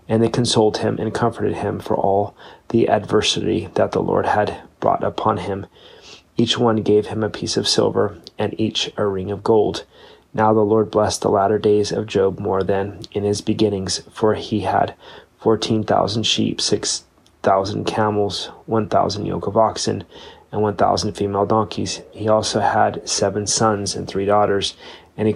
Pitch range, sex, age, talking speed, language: 100-110 Hz, male, 30-49, 170 wpm, English